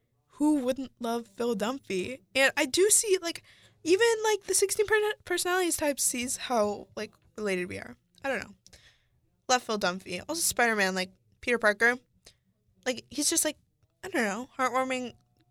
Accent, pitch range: American, 195-270 Hz